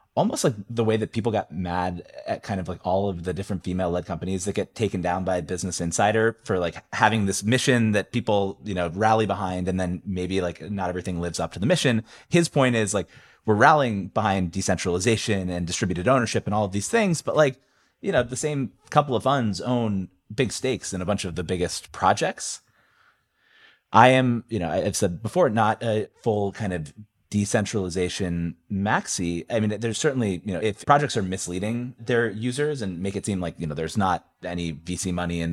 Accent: American